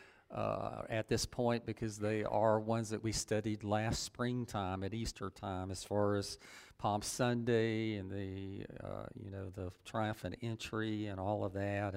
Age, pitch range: 50-69, 100-120 Hz